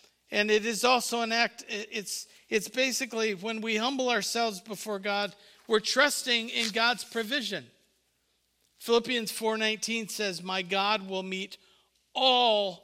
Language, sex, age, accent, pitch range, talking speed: English, male, 50-69, American, 185-230 Hz, 130 wpm